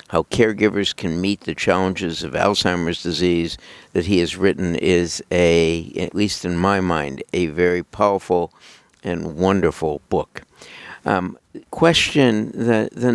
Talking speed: 130 wpm